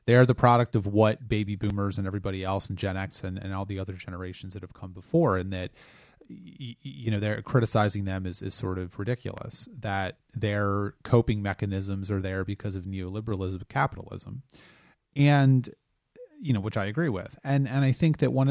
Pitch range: 105-130 Hz